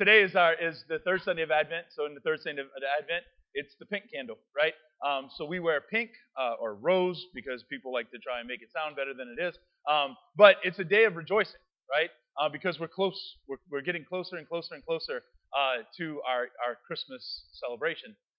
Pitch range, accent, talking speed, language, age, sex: 155-195 Hz, American, 220 wpm, English, 30-49, male